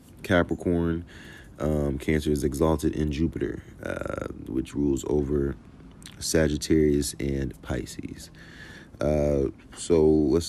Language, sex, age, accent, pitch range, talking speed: English, male, 30-49, American, 75-90 Hz, 95 wpm